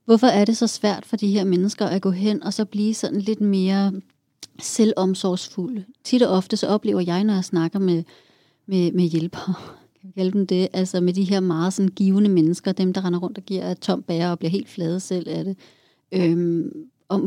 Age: 30-49